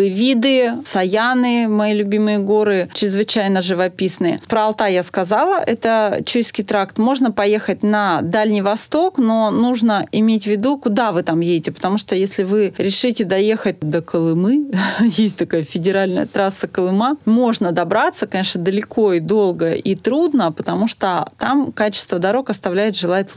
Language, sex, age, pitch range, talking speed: Russian, female, 30-49, 185-230 Hz, 145 wpm